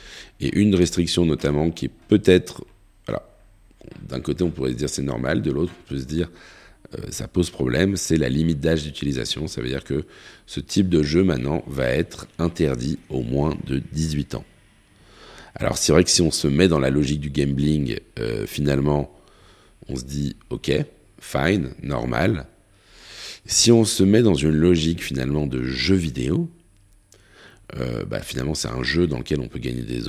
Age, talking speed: 40-59, 185 wpm